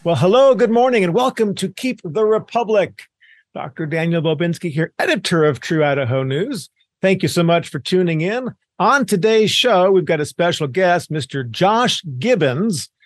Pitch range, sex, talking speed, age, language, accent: 145-190 Hz, male, 170 wpm, 50-69, English, American